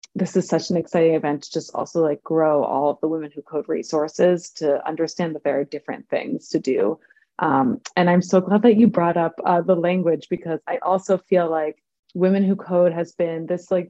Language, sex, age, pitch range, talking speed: English, female, 20-39, 170-195 Hz, 220 wpm